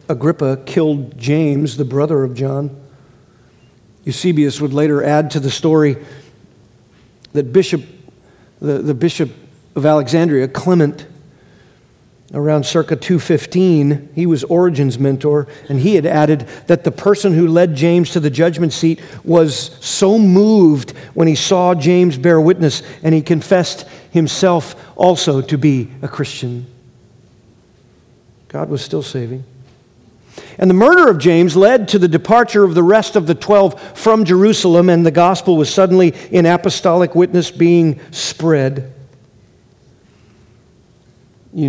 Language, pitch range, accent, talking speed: English, 140-170 Hz, American, 135 wpm